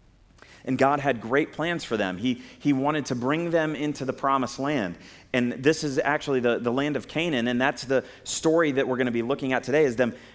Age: 30-49